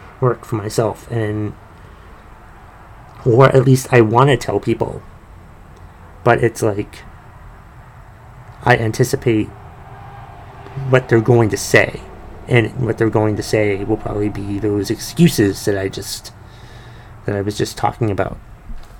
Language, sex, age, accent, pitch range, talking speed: English, male, 30-49, American, 90-125 Hz, 135 wpm